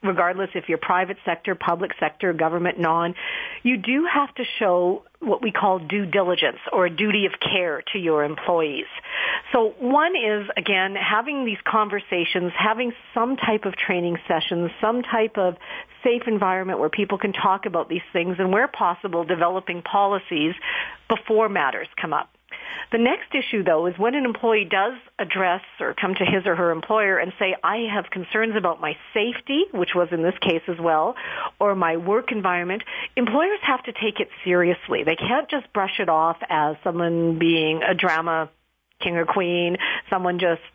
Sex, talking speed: female, 175 wpm